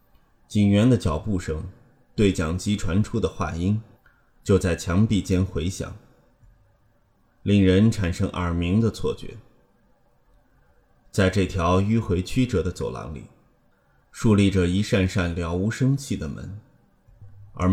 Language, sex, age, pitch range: Chinese, male, 30-49, 90-110 Hz